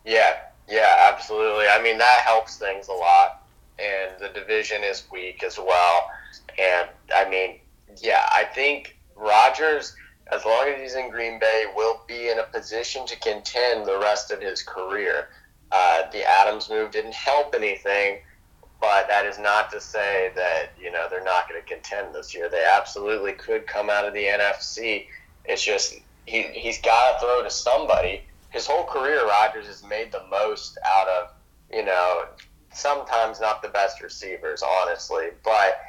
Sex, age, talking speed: male, 30-49, 170 wpm